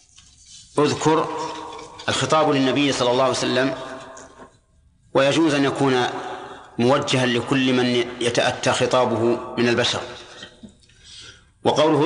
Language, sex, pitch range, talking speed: Arabic, male, 125-145 Hz, 90 wpm